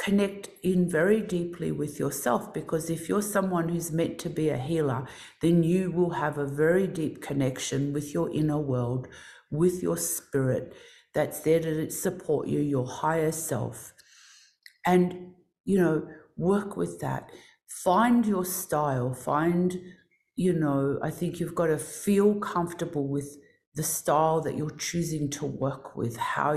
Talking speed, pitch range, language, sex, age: 155 wpm, 140-180 Hz, English, female, 50-69